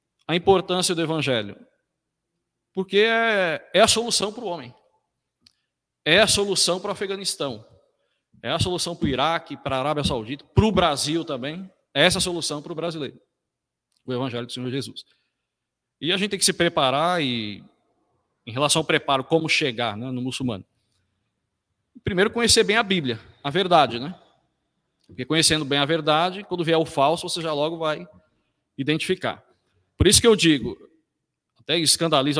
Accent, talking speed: Brazilian, 170 wpm